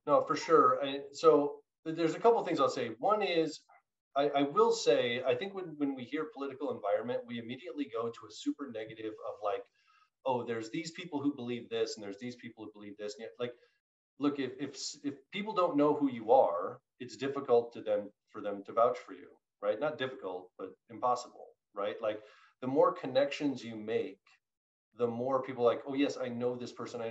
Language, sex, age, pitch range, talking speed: English, male, 30-49, 110-145 Hz, 210 wpm